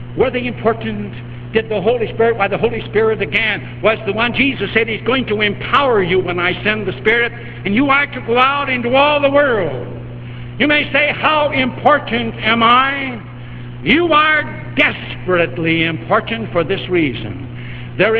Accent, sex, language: American, male, English